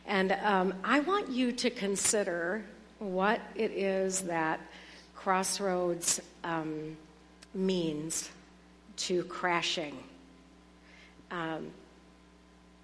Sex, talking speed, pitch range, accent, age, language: female, 80 wpm, 155-195 Hz, American, 50-69, English